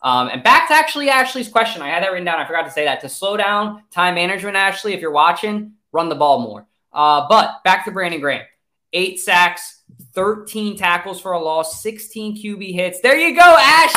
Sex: male